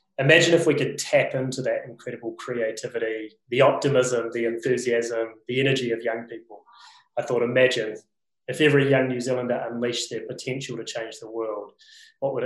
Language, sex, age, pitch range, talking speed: English, male, 20-39, 115-145 Hz, 170 wpm